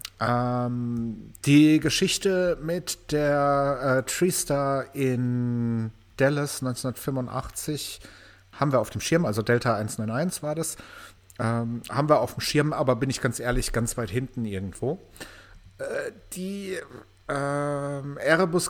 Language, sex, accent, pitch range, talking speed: German, male, German, 115-150 Hz, 130 wpm